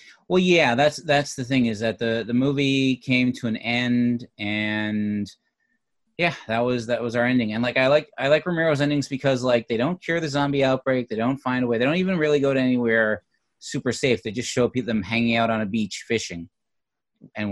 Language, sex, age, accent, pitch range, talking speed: English, male, 30-49, American, 100-130 Hz, 225 wpm